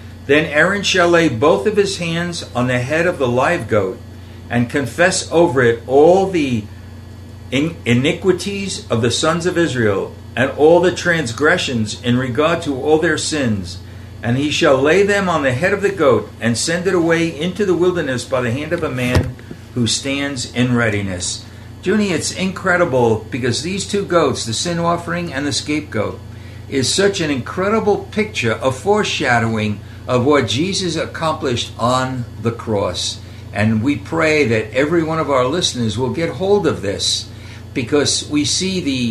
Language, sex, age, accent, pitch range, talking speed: English, male, 60-79, American, 110-170 Hz, 170 wpm